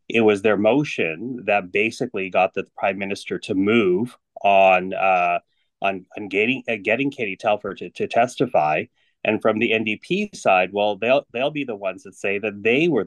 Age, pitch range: 30-49, 100-125 Hz